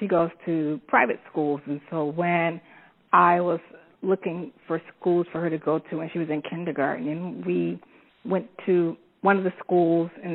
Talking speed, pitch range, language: 185 wpm, 165-210 Hz, English